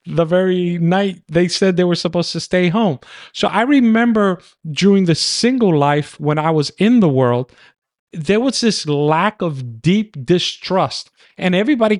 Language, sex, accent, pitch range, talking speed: English, male, American, 150-195 Hz, 165 wpm